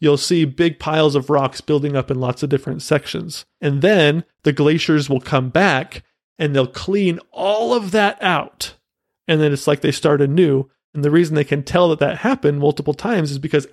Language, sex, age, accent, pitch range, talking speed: English, male, 30-49, American, 145-175 Hz, 205 wpm